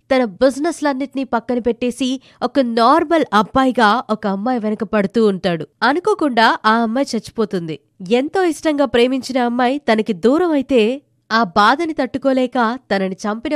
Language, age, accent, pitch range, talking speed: Telugu, 20-39, native, 215-275 Hz, 120 wpm